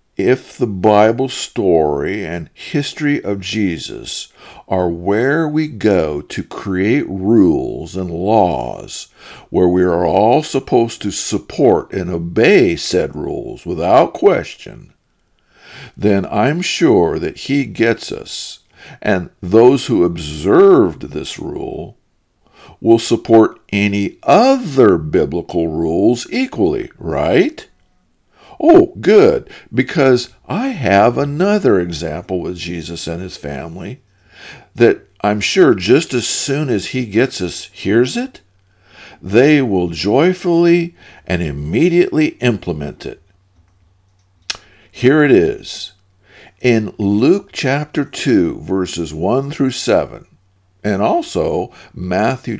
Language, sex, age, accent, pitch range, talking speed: English, male, 50-69, American, 95-145 Hz, 110 wpm